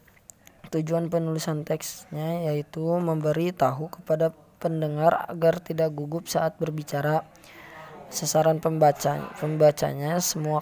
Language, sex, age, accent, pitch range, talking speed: Indonesian, female, 20-39, native, 150-170 Hz, 95 wpm